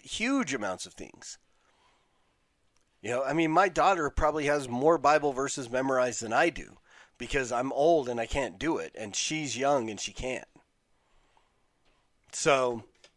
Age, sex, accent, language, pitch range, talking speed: 40-59, male, American, English, 115-145 Hz, 155 wpm